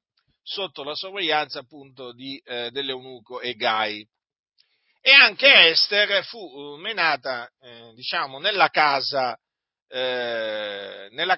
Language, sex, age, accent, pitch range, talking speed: Italian, male, 50-69, native, 135-195 Hz, 100 wpm